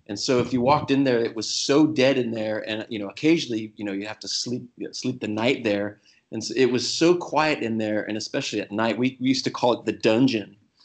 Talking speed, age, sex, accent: 260 wpm, 30-49, male, American